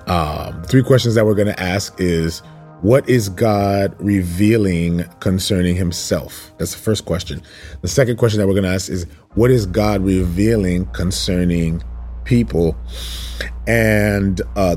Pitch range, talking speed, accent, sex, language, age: 80-105 Hz, 140 wpm, American, male, English, 30-49